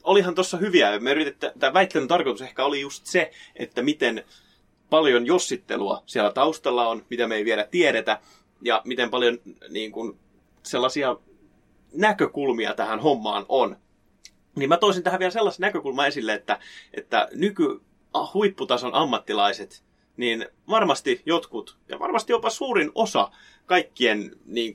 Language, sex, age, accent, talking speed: Finnish, male, 30-49, native, 135 wpm